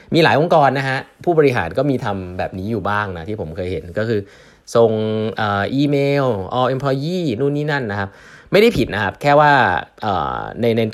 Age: 20-39